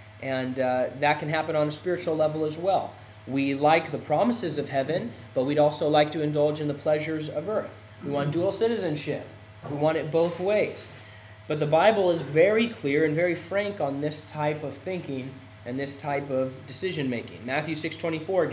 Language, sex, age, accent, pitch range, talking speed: English, male, 30-49, American, 130-170 Hz, 190 wpm